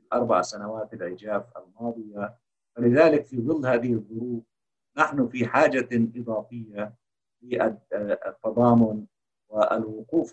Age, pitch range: 50-69, 105-120 Hz